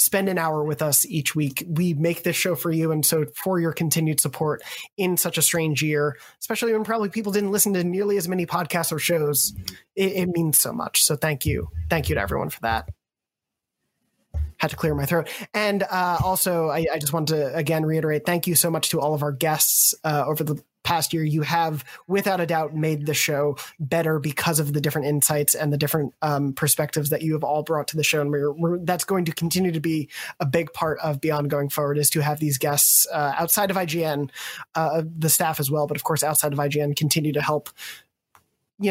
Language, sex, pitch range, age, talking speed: English, male, 150-175 Hz, 20-39, 225 wpm